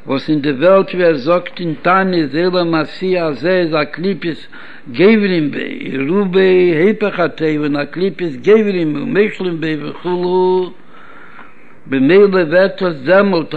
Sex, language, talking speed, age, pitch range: male, Hebrew, 100 wpm, 60-79, 170-210 Hz